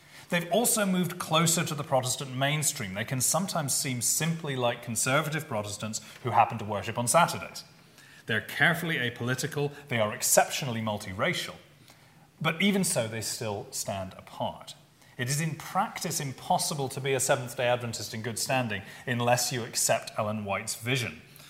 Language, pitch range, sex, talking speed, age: English, 110-150 Hz, male, 155 wpm, 30-49